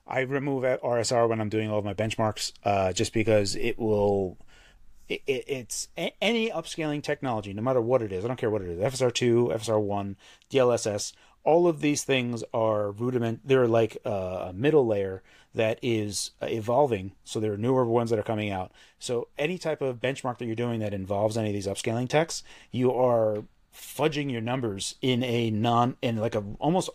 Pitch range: 105-130 Hz